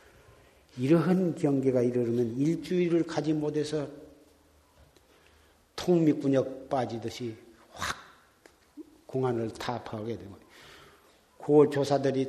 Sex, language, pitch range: male, Korean, 120-160 Hz